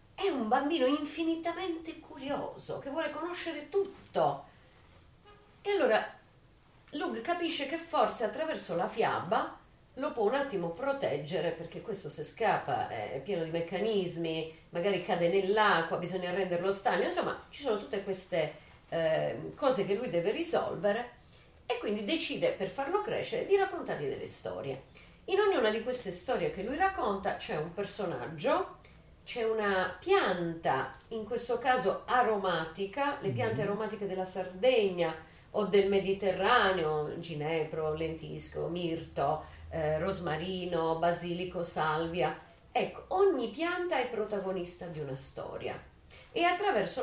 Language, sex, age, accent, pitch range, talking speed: Italian, female, 40-59, native, 170-285 Hz, 130 wpm